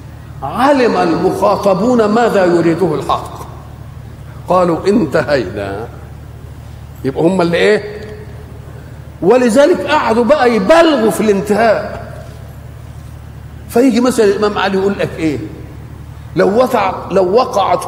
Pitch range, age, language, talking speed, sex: 165-230 Hz, 50-69, Arabic, 95 wpm, male